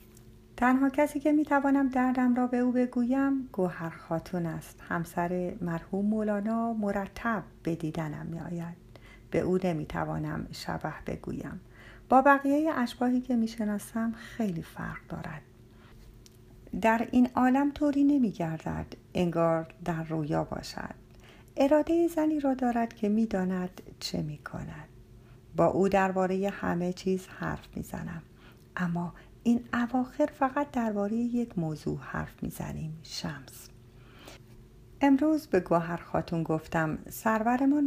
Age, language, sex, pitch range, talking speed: 50-69, Persian, female, 160-245 Hz, 120 wpm